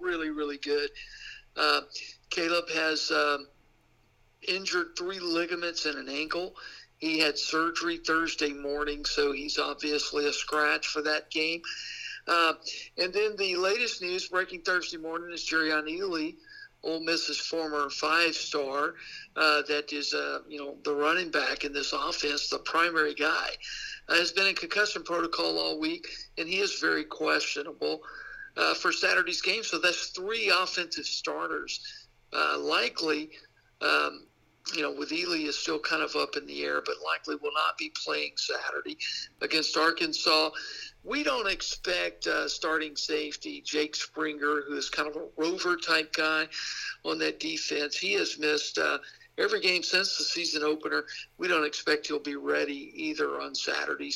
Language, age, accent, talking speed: English, 60-79, American, 155 wpm